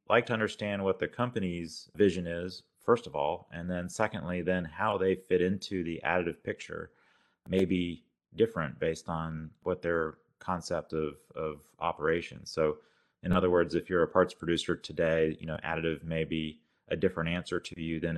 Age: 30-49